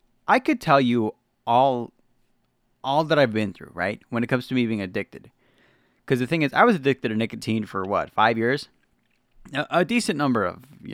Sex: male